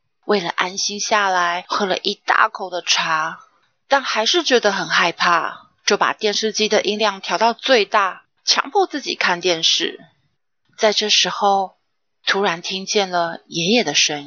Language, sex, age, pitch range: Chinese, female, 30-49, 185-245 Hz